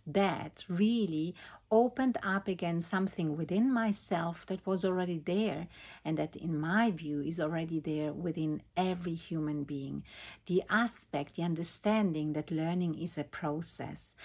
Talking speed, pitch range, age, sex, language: 140 wpm, 155-190 Hz, 50-69, female, English